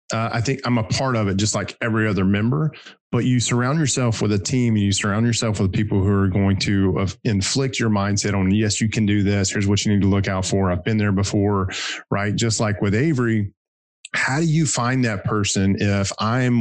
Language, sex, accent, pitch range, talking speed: English, male, American, 95-110 Hz, 235 wpm